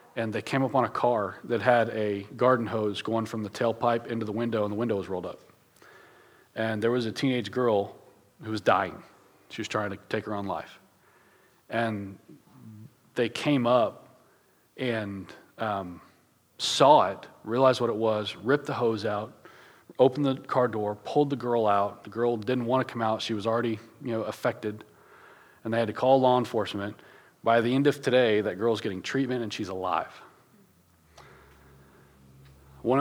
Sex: male